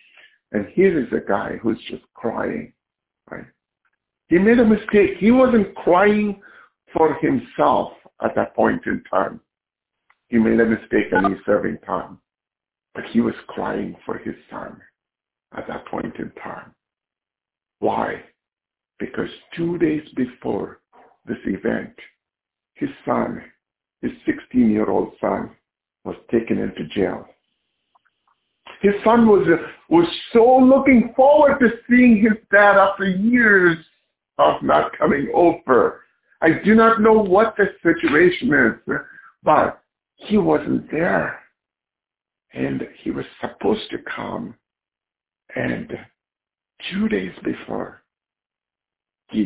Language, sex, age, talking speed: English, male, 60-79, 120 wpm